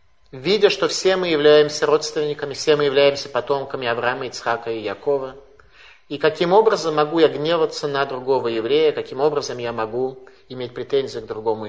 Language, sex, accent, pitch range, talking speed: Russian, male, native, 130-180 Hz, 160 wpm